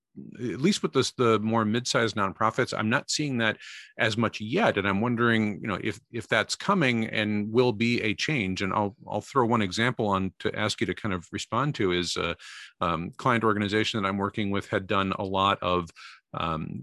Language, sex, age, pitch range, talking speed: English, male, 40-59, 95-120 Hz, 210 wpm